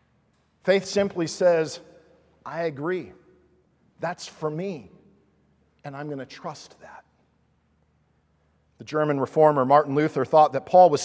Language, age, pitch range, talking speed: English, 50-69, 145-200 Hz, 125 wpm